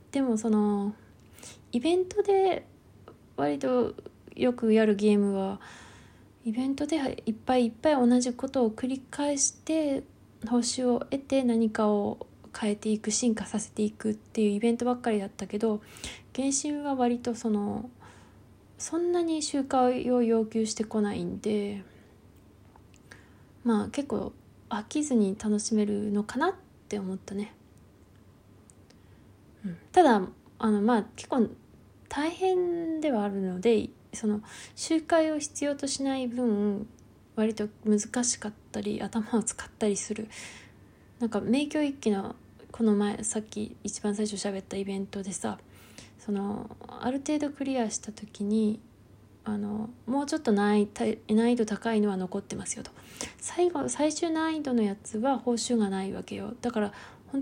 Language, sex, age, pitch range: Japanese, female, 20-39, 205-260 Hz